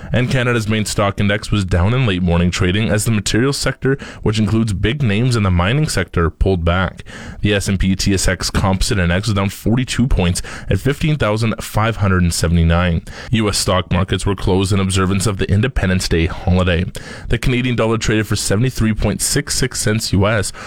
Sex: male